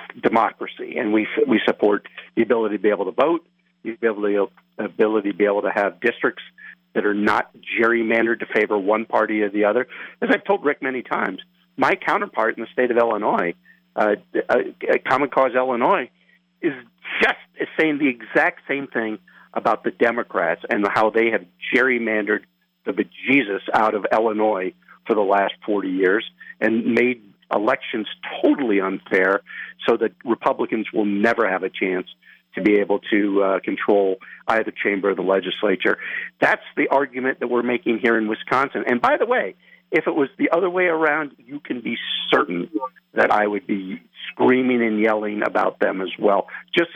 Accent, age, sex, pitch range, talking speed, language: American, 50-69, male, 105-145 Hz, 175 wpm, English